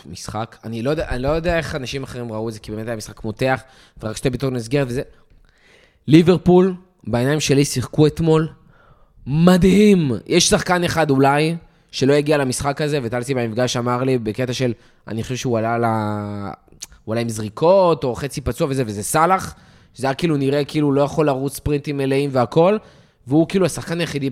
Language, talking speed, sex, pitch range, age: Hebrew, 185 wpm, male, 125-160 Hz, 20-39